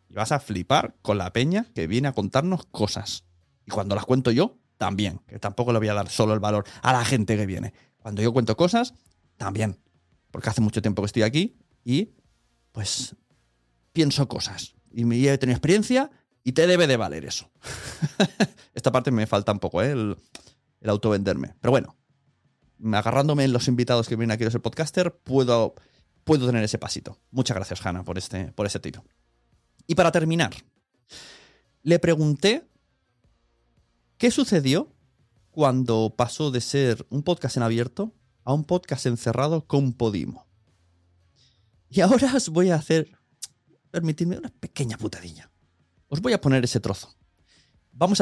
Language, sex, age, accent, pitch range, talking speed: Spanish, male, 30-49, Spanish, 105-155 Hz, 165 wpm